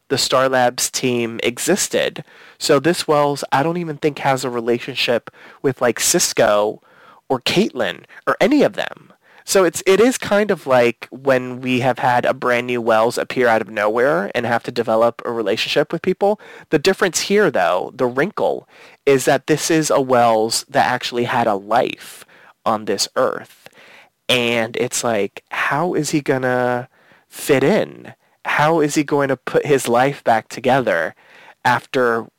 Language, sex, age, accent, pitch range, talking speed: English, male, 30-49, American, 120-155 Hz, 170 wpm